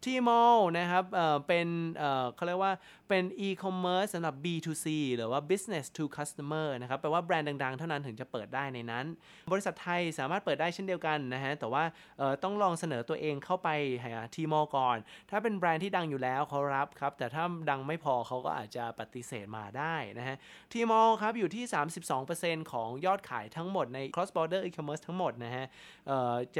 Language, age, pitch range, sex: Thai, 20-39, 130-170 Hz, male